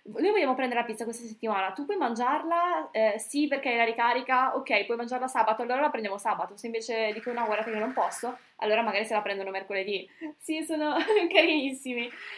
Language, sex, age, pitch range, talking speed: Italian, female, 10-29, 225-280 Hz, 200 wpm